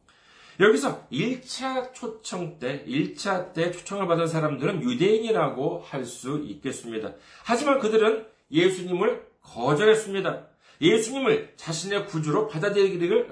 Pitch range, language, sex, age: 140-215 Hz, Korean, male, 40-59